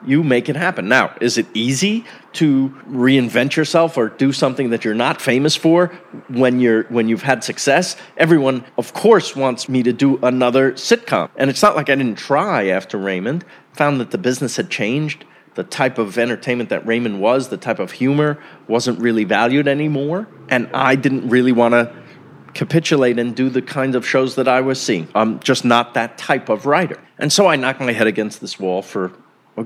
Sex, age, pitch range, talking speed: male, 30-49, 120-160 Hz, 200 wpm